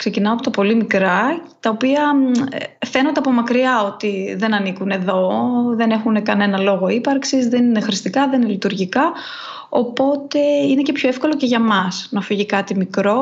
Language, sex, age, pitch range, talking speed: Greek, female, 20-39, 200-270 Hz, 170 wpm